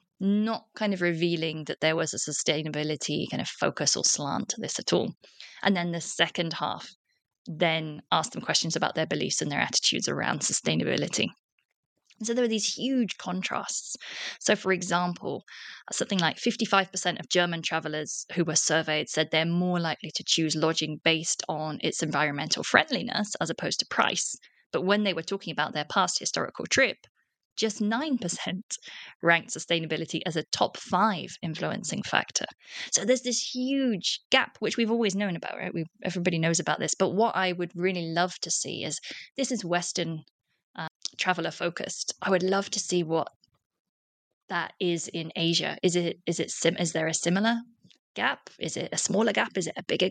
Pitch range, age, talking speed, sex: 165-205 Hz, 20-39, 180 wpm, female